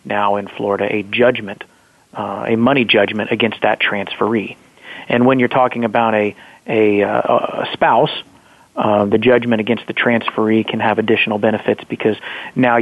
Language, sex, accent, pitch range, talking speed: English, male, American, 105-120 Hz, 155 wpm